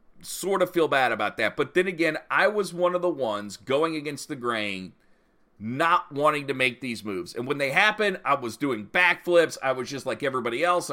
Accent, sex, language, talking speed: American, male, English, 215 wpm